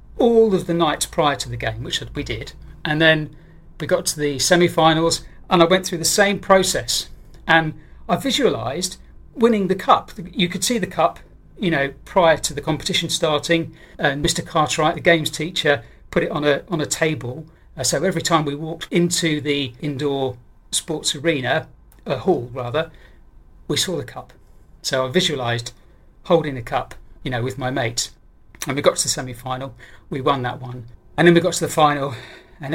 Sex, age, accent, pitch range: male, 40-59, British, 130-165 Hz